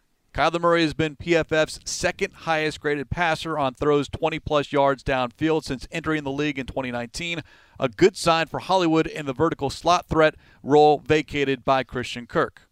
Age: 40-59